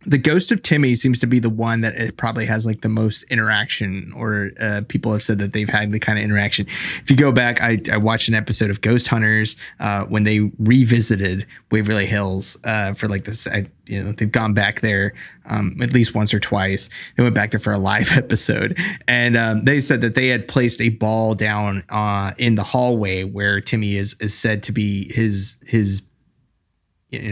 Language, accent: English, American